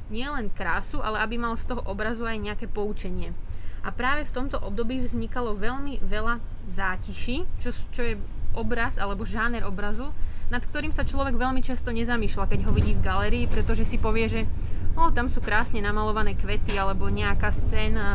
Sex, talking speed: female, 170 wpm